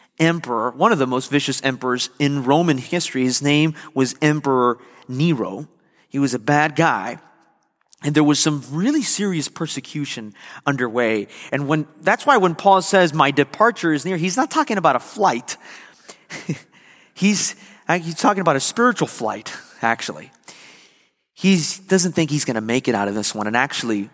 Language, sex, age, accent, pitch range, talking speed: English, male, 30-49, American, 130-190 Hz, 165 wpm